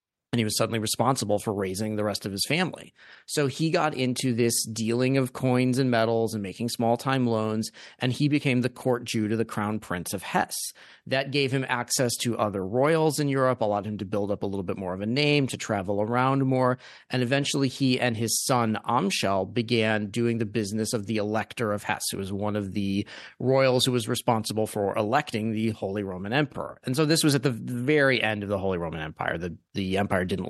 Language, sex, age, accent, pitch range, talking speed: English, male, 30-49, American, 105-130 Hz, 220 wpm